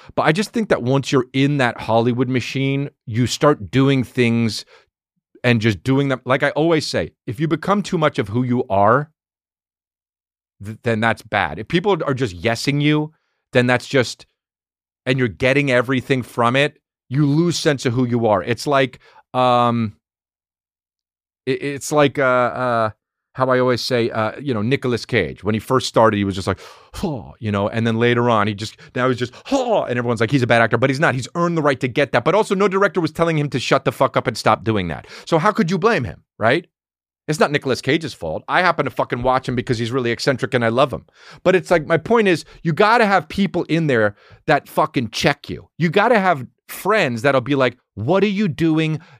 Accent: American